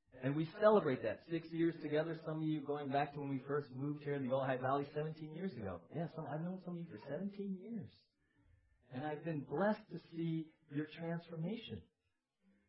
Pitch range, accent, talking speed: 135-195 Hz, American, 210 wpm